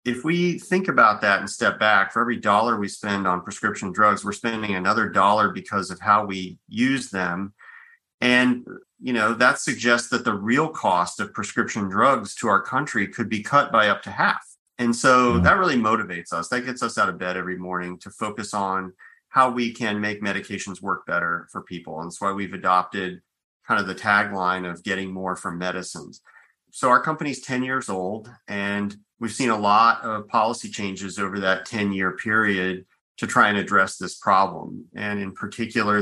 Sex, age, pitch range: male, 40-59, 95-115 Hz